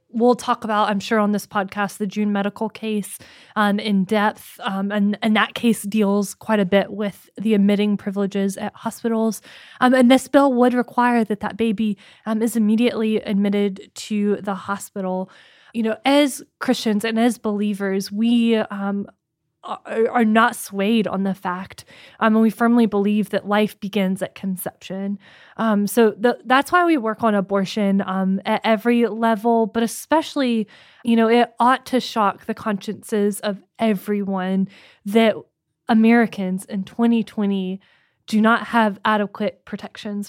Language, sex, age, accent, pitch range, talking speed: English, female, 10-29, American, 195-225 Hz, 155 wpm